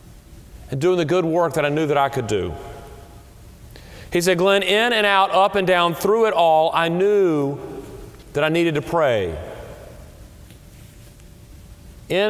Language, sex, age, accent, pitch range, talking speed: English, male, 40-59, American, 135-185 Hz, 155 wpm